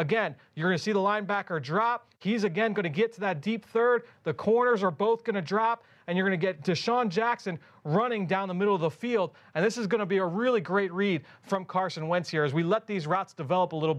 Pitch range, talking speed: 175-225 Hz, 255 wpm